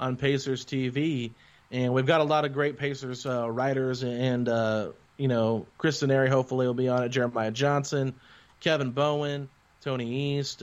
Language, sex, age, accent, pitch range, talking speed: English, male, 30-49, American, 125-145 Hz, 175 wpm